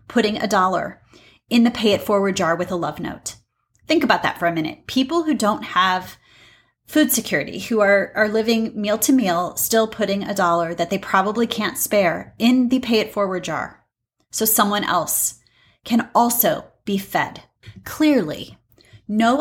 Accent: American